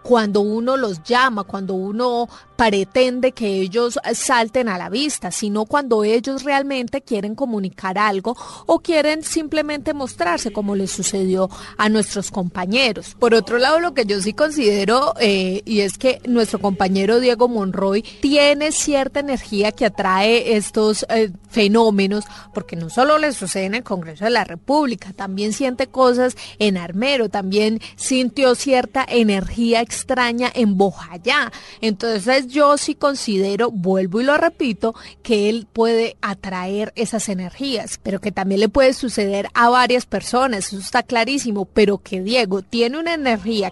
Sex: female